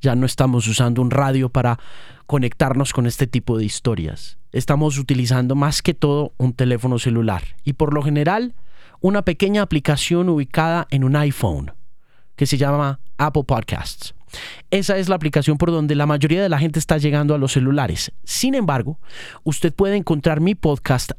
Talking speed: 170 wpm